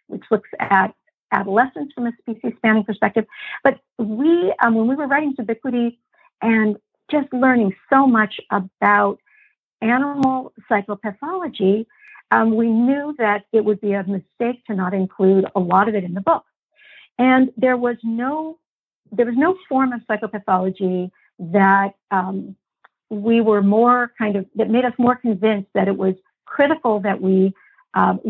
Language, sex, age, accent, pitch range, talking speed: English, female, 50-69, American, 200-260 Hz, 155 wpm